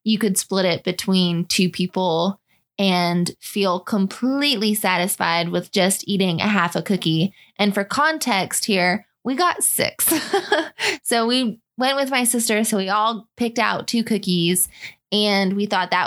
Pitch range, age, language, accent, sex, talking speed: 185-220 Hz, 20-39, English, American, female, 155 wpm